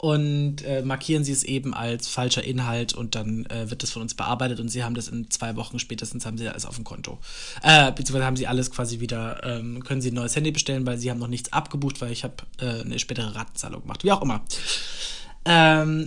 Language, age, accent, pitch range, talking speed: German, 20-39, German, 125-155 Hz, 235 wpm